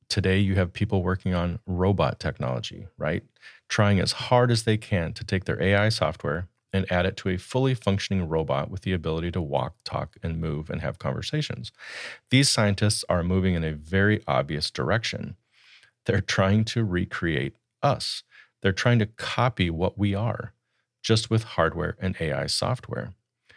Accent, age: American, 40-59